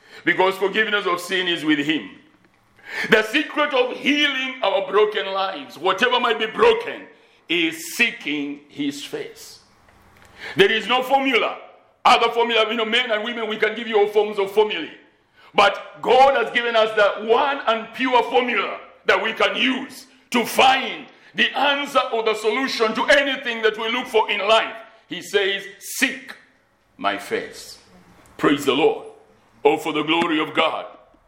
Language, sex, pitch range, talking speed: English, male, 195-265 Hz, 160 wpm